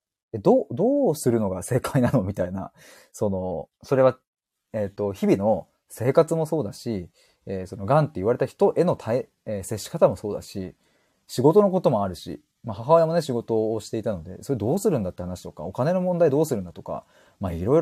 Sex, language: male, Japanese